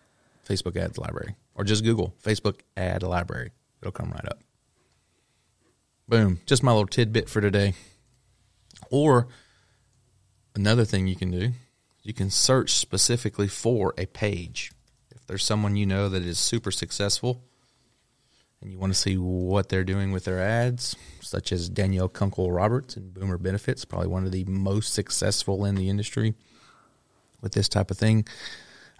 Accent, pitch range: American, 95-115 Hz